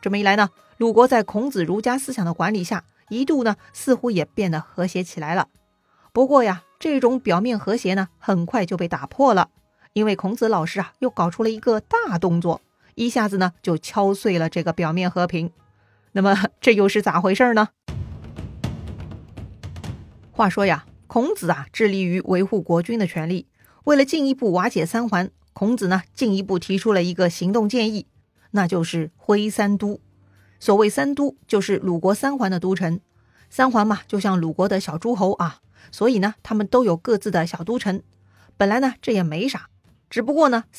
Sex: female